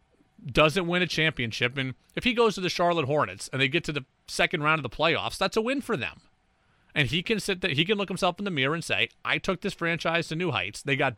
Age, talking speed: 30-49, 270 wpm